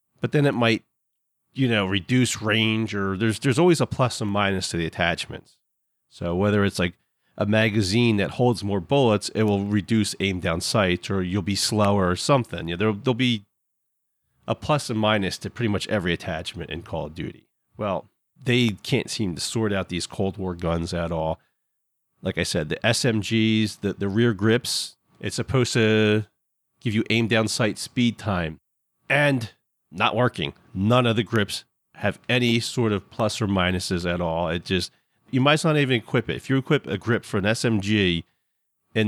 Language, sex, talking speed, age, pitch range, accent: English, male, 195 wpm, 40-59, 100-125 Hz, American